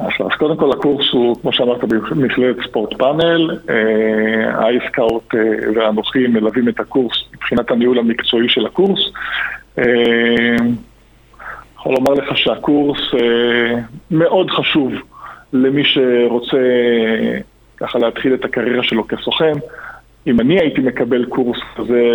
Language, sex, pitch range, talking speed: Hebrew, male, 120-140 Hz, 120 wpm